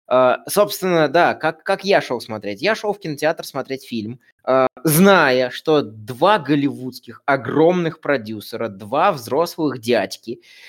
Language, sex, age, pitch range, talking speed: Russian, male, 20-39, 130-190 Hz, 125 wpm